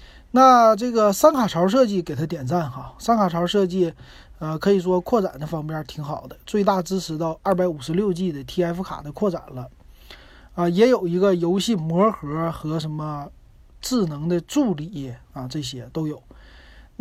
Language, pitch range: Chinese, 155-205 Hz